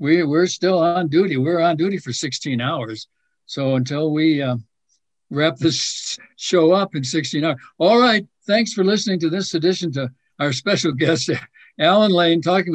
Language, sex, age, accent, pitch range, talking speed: English, male, 60-79, American, 130-170 Hz, 175 wpm